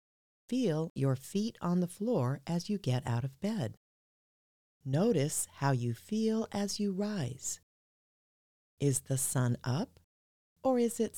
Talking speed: 140 wpm